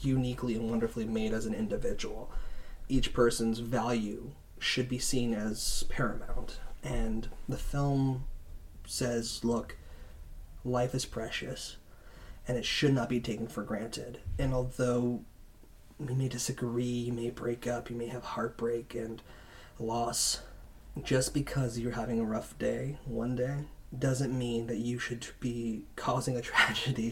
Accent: American